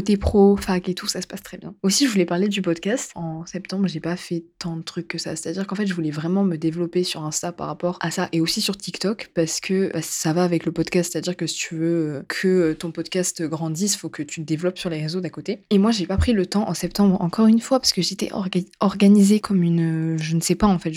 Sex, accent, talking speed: female, French, 280 wpm